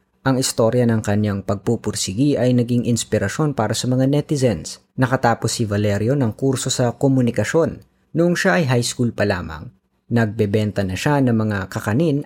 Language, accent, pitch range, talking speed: Filipino, native, 105-135 Hz, 155 wpm